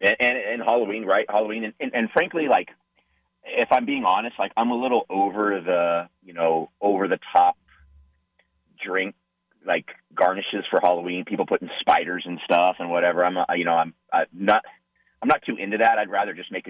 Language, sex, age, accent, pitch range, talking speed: English, male, 30-49, American, 85-110 Hz, 195 wpm